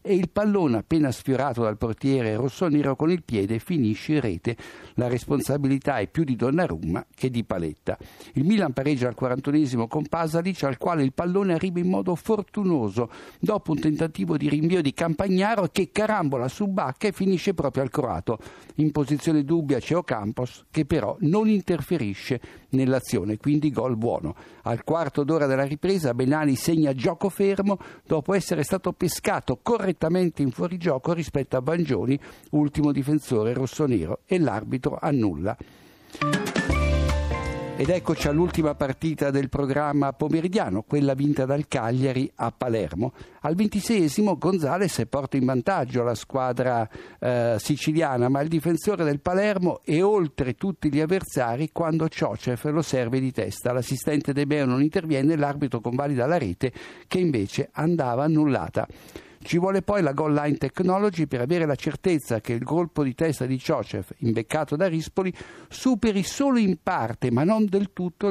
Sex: male